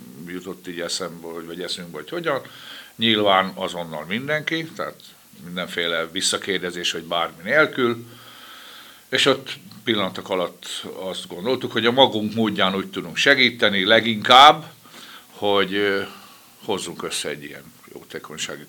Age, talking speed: 60-79, 110 wpm